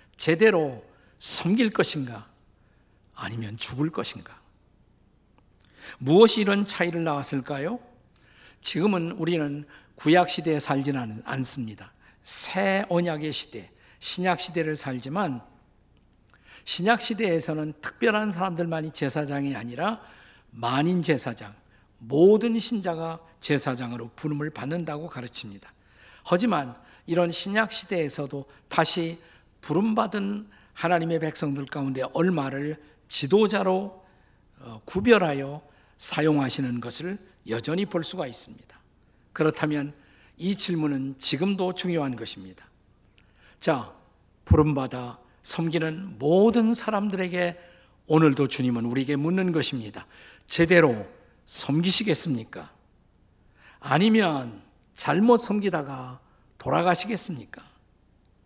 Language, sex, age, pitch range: Korean, male, 50-69, 130-180 Hz